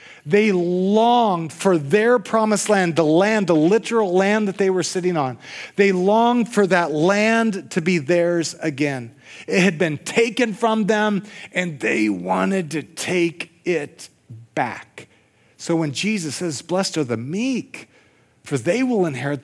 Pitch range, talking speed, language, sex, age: 145-185 Hz, 155 wpm, English, male, 40-59